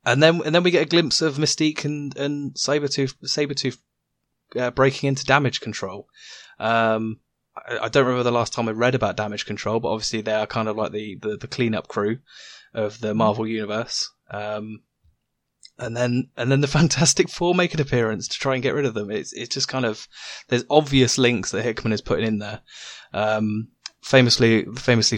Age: 20-39